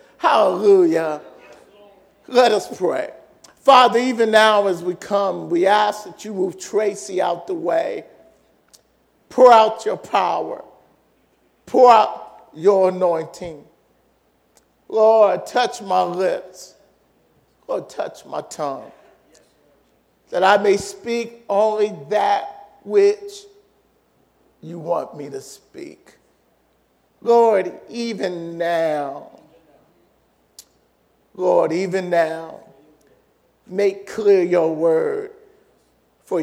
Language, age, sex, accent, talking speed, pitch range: English, 50-69, male, American, 95 wpm, 180-245 Hz